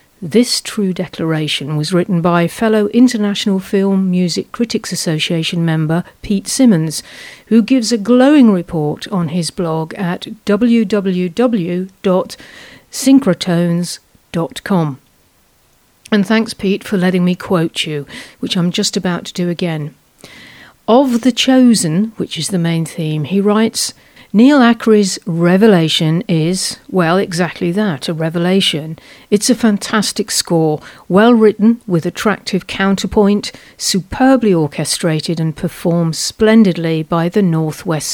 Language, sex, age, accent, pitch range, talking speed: English, female, 50-69, British, 165-215 Hz, 120 wpm